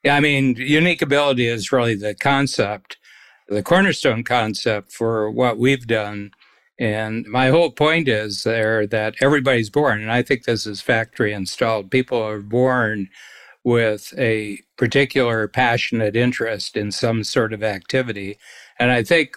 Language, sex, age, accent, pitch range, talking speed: English, male, 60-79, American, 110-130 Hz, 150 wpm